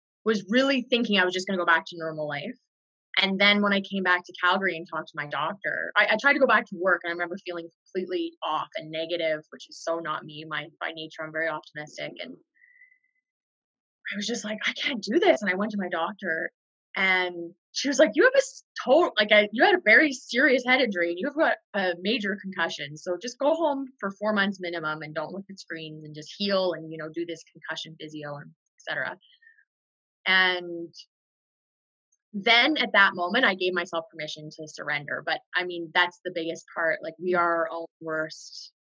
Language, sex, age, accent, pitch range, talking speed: English, female, 20-39, American, 165-215 Hz, 215 wpm